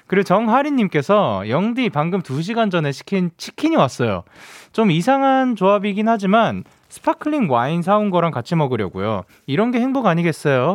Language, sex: Korean, male